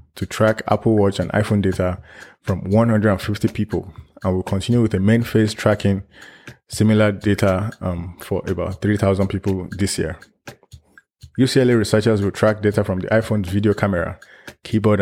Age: 20-39